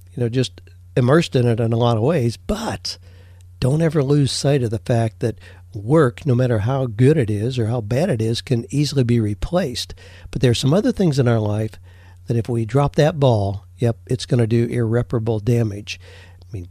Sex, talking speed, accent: male, 215 wpm, American